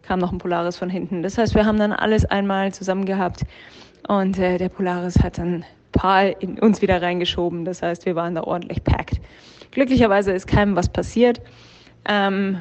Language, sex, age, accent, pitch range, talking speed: German, female, 20-39, German, 180-205 Hz, 185 wpm